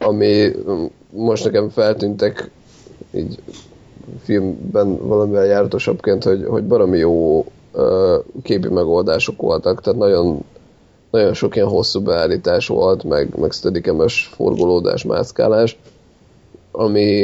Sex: male